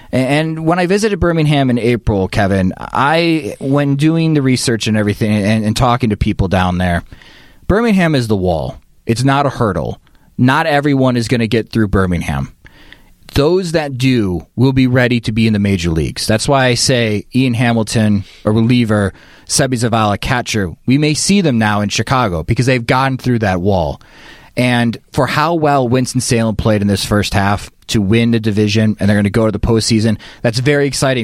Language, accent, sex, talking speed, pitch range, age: English, American, male, 190 wpm, 105-130 Hz, 30-49